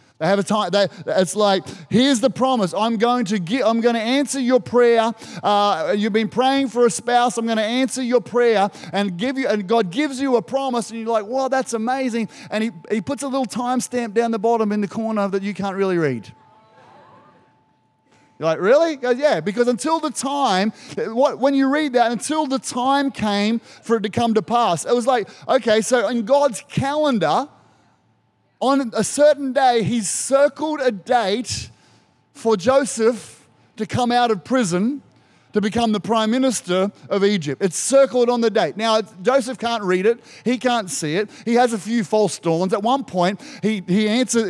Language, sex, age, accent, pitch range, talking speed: English, male, 30-49, Australian, 200-255 Hz, 200 wpm